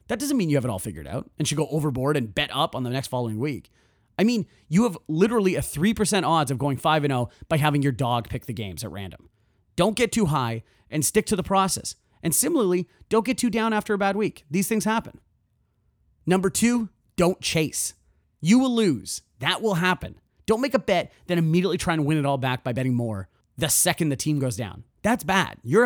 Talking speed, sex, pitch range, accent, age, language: 225 wpm, male, 130-200 Hz, American, 30-49, English